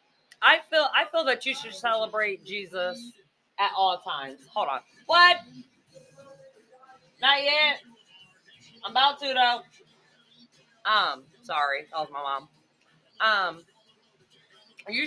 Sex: female